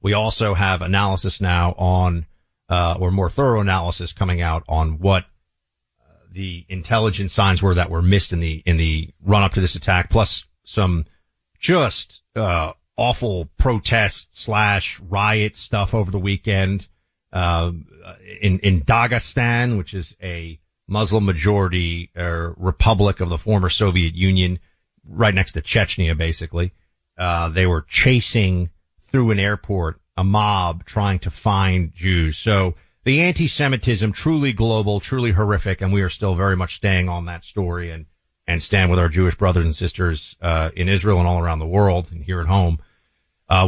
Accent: American